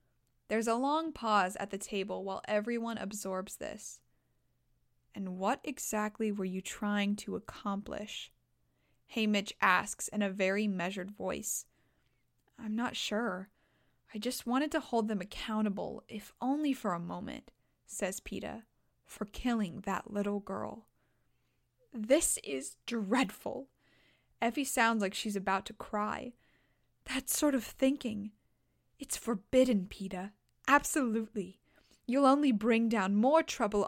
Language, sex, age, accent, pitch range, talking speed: English, female, 10-29, American, 200-265 Hz, 130 wpm